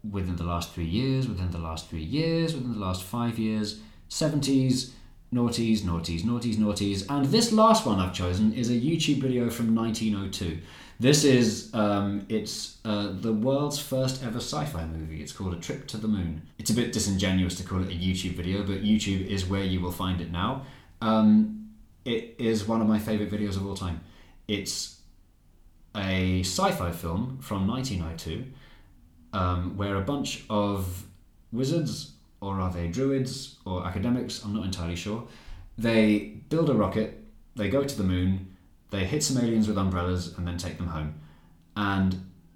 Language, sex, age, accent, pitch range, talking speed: English, male, 20-39, British, 90-115 Hz, 175 wpm